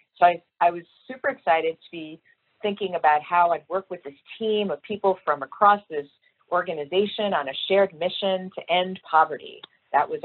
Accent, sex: American, female